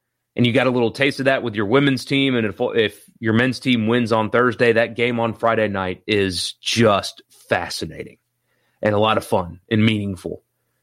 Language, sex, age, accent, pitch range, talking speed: English, male, 30-49, American, 105-135 Hz, 200 wpm